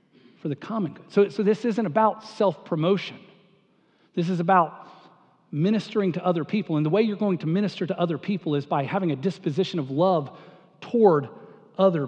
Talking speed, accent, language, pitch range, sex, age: 180 wpm, American, English, 180-220 Hz, male, 40-59